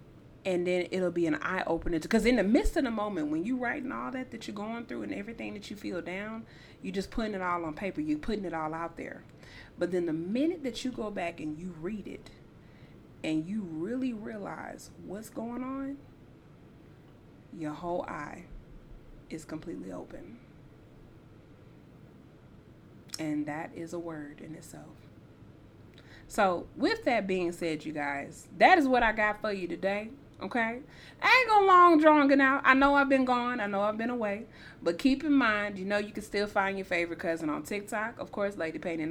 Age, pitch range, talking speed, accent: 30-49, 170-245 Hz, 190 wpm, American